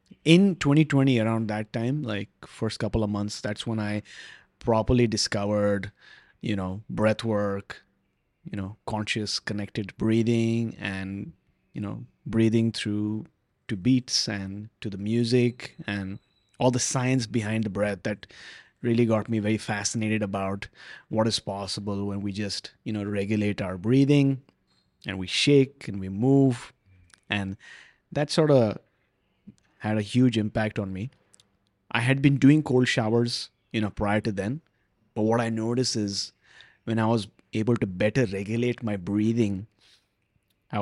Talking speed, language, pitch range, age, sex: 150 wpm, English, 100-120 Hz, 30-49, male